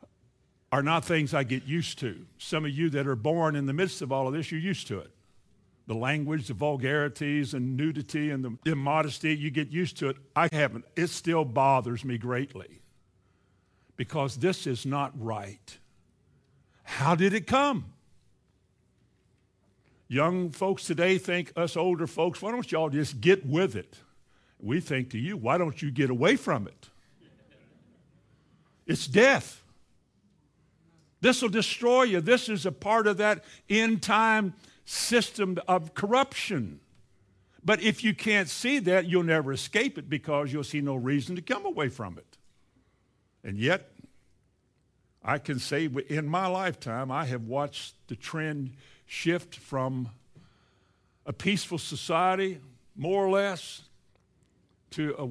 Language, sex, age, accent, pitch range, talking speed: English, male, 60-79, American, 130-175 Hz, 150 wpm